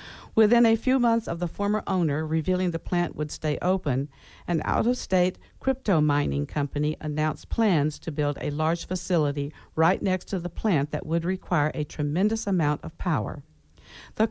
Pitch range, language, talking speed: 150-200 Hz, English, 170 wpm